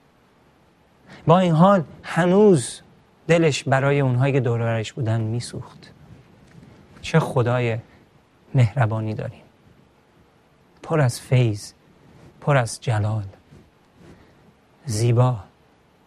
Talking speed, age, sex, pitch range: 80 wpm, 40-59, male, 115-145 Hz